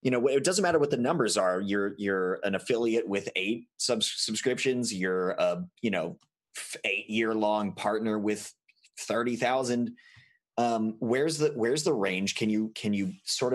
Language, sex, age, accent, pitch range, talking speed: English, male, 30-49, American, 105-150 Hz, 165 wpm